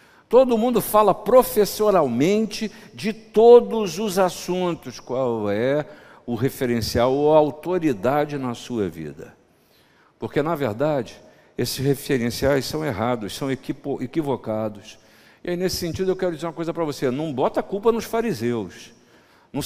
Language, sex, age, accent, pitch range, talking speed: Portuguese, male, 50-69, Brazilian, 120-190 Hz, 135 wpm